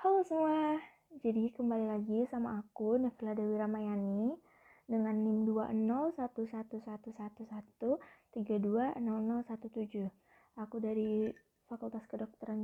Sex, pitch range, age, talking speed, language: female, 210-240 Hz, 20-39, 80 wpm, Indonesian